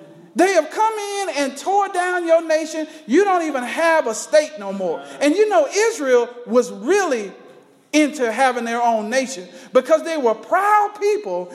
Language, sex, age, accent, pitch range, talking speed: English, male, 40-59, American, 235-355 Hz, 170 wpm